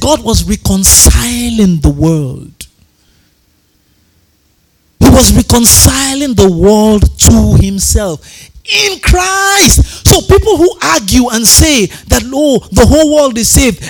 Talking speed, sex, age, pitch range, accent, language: 115 wpm, male, 50-69, 200-325 Hz, Nigerian, English